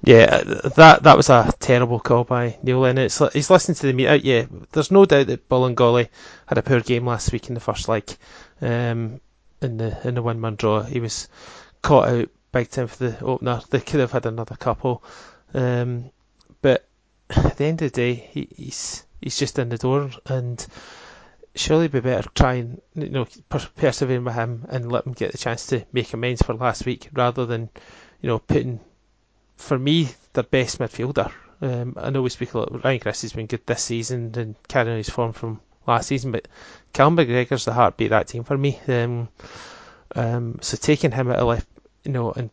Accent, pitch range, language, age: British, 115-135 Hz, English, 20-39